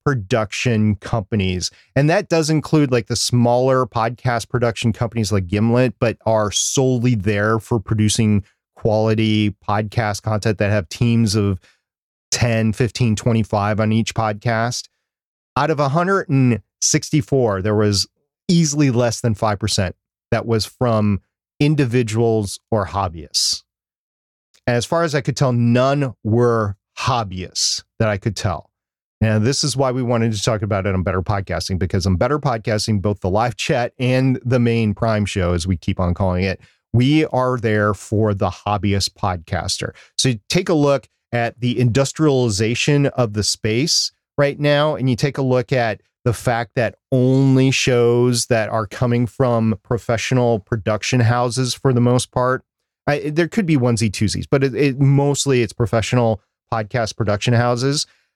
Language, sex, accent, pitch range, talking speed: English, male, American, 105-130 Hz, 155 wpm